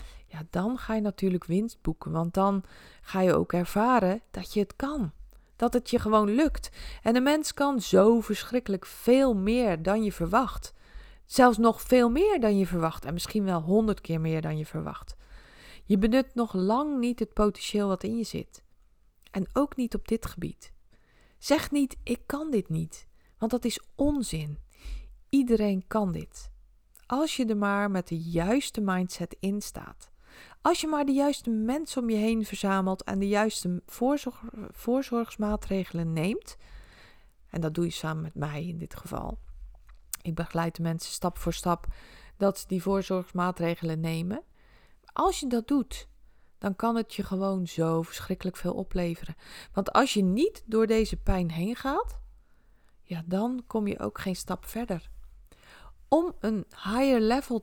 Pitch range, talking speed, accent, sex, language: 175-240 Hz, 165 wpm, Dutch, female, Dutch